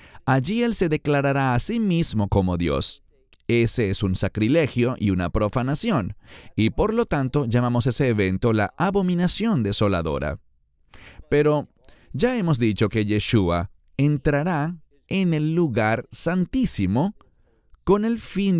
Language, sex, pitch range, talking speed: English, male, 100-160 Hz, 130 wpm